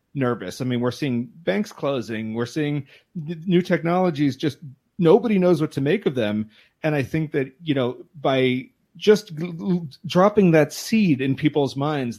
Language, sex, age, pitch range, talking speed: English, male, 30-49, 115-155 Hz, 175 wpm